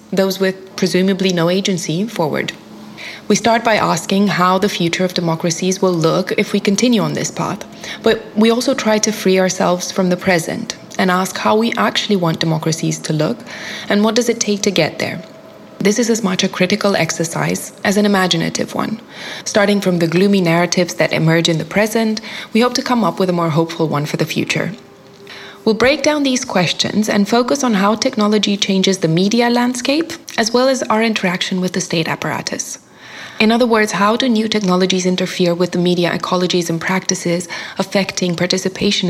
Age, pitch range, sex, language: 20-39, 180-220 Hz, female, English